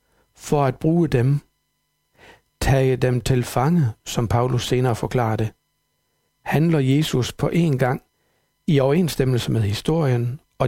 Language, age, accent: Danish, 60-79, native